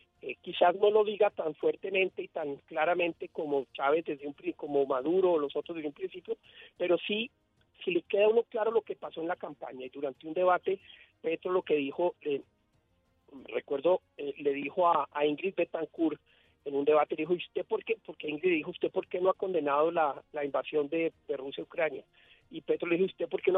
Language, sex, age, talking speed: Spanish, male, 40-59, 215 wpm